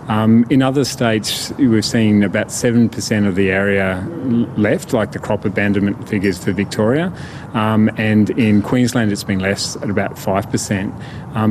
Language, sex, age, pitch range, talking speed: English, male, 30-49, 100-120 Hz, 155 wpm